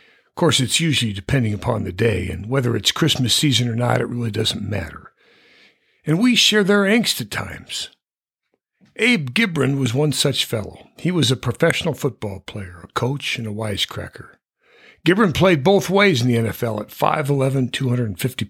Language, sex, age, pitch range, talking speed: English, male, 60-79, 115-150 Hz, 170 wpm